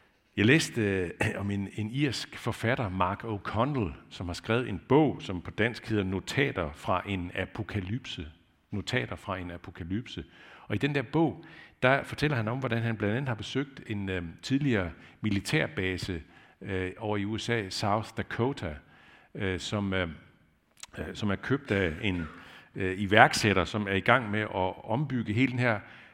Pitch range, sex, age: 95-115 Hz, male, 60-79